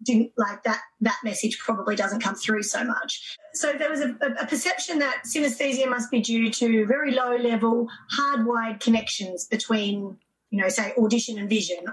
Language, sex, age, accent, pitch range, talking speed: English, female, 30-49, Australian, 210-250 Hz, 170 wpm